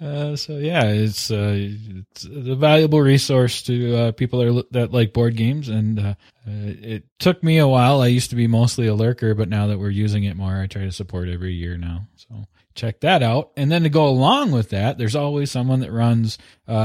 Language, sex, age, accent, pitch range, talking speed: English, male, 20-39, American, 110-130 Hz, 230 wpm